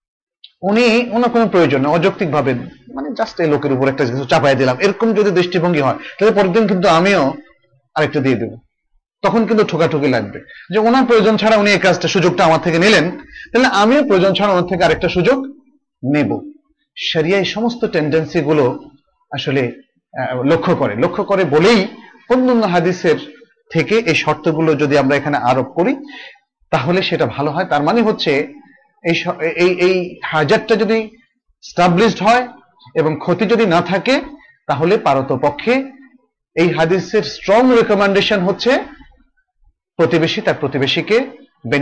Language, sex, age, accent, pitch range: Bengali, male, 30-49, native, 155-230 Hz